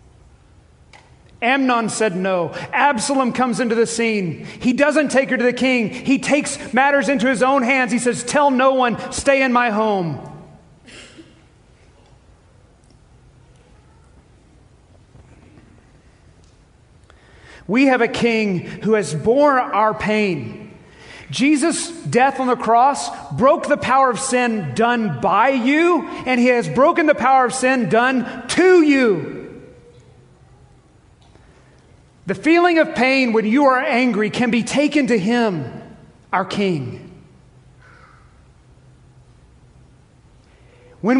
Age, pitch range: 40-59, 215-270 Hz